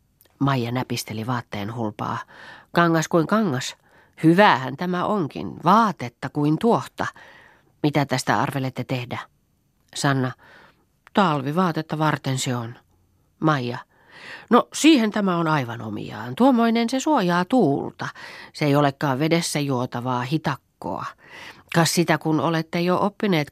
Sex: female